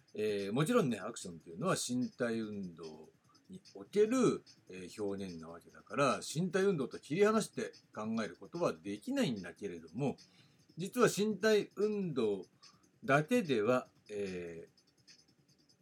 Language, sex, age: Japanese, male, 60-79